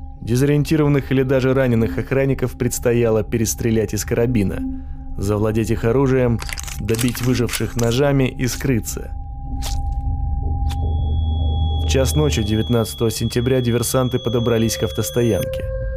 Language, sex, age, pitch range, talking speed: Russian, male, 20-39, 80-120 Hz, 100 wpm